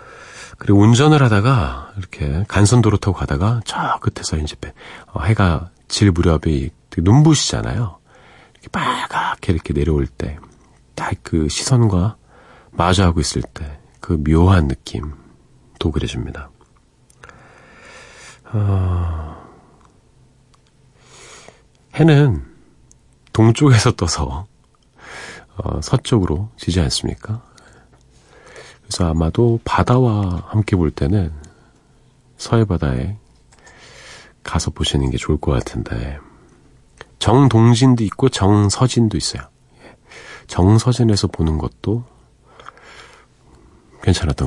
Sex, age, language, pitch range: male, 40-59, Korean, 80-120 Hz